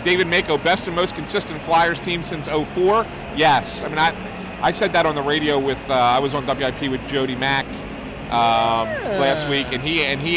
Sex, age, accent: male, 30-49, American